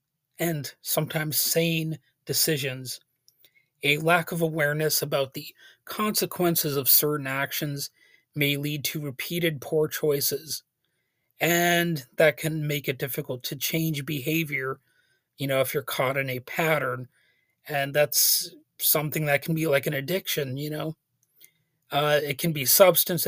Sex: male